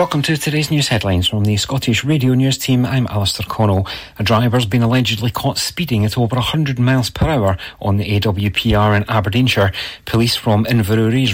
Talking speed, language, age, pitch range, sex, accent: 180 wpm, English, 40-59, 100-125 Hz, male, British